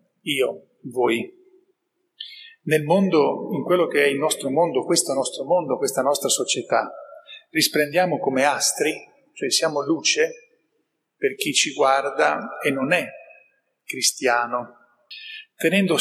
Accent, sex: native, male